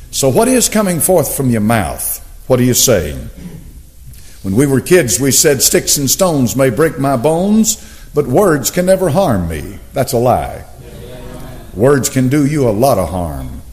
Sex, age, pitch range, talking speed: male, 60-79, 100-145 Hz, 185 wpm